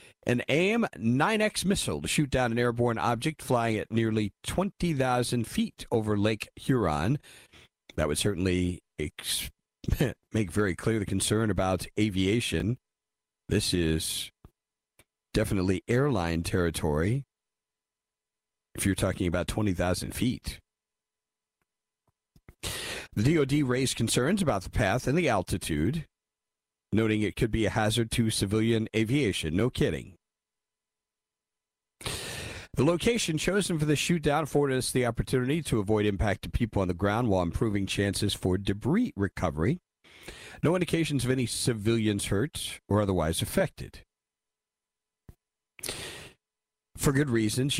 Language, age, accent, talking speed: English, 40-59, American, 120 wpm